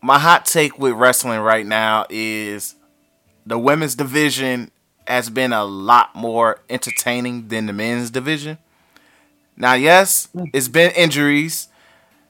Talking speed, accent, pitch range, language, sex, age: 125 wpm, American, 115-135 Hz, English, male, 20-39